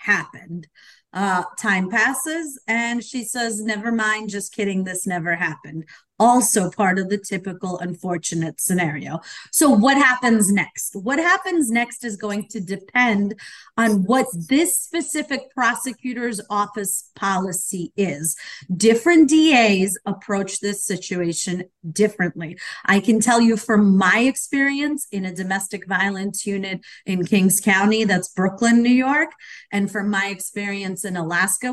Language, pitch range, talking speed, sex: English, 195-250 Hz, 135 wpm, female